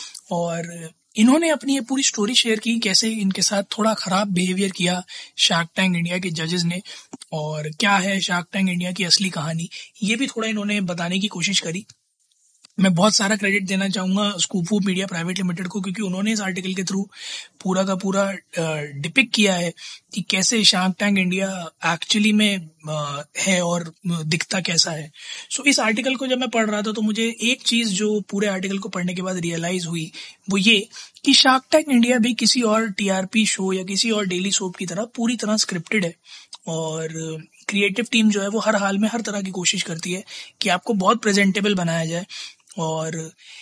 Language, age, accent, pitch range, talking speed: Hindi, 20-39, native, 175-215 Hz, 190 wpm